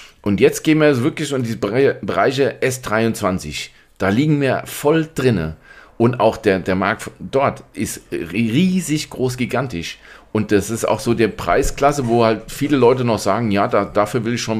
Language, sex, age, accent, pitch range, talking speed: German, male, 40-59, German, 95-135 Hz, 185 wpm